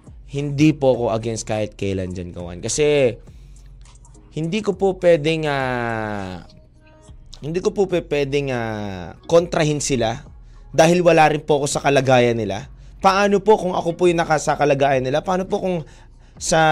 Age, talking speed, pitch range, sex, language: 20-39, 150 wpm, 130-190 Hz, male, Filipino